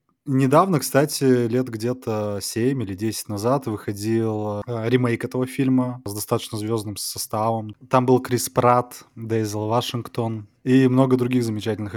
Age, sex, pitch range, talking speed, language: 20-39, male, 105-130 Hz, 130 wpm, Russian